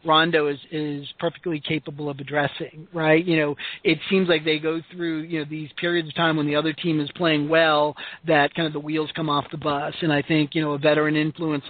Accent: American